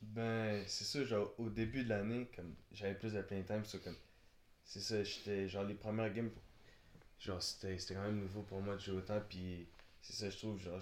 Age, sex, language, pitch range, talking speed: 20-39, male, French, 95-105 Hz, 215 wpm